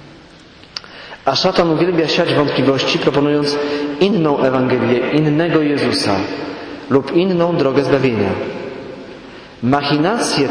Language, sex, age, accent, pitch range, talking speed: English, male, 40-59, Polish, 130-155 Hz, 85 wpm